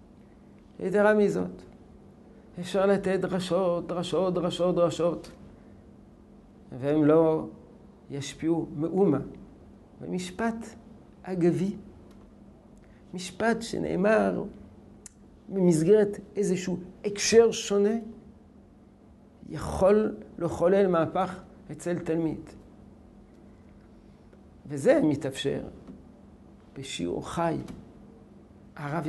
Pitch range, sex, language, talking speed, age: 160-200 Hz, male, Hebrew, 60 wpm, 60-79